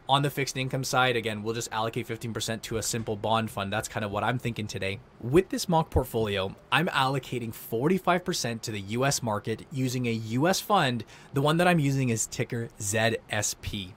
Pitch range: 110-140 Hz